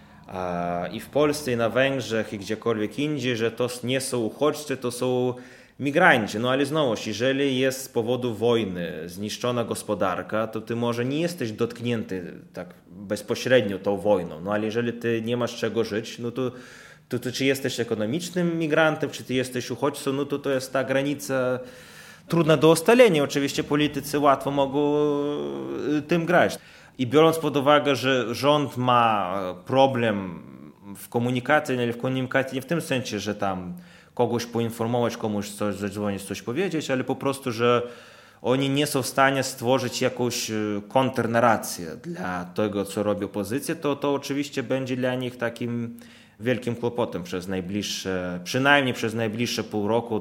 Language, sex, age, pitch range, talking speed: Polish, male, 20-39, 110-135 Hz, 155 wpm